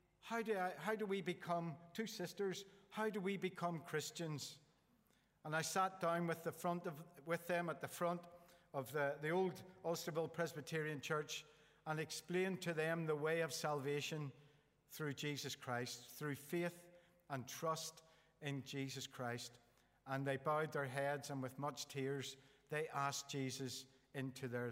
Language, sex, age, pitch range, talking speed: English, male, 50-69, 145-175 Hz, 160 wpm